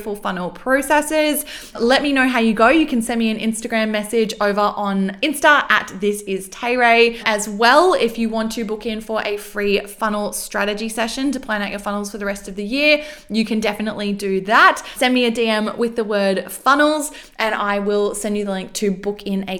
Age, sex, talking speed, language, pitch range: 20-39, female, 215 wpm, English, 205-250 Hz